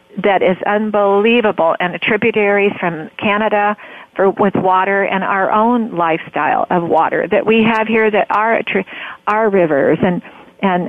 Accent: American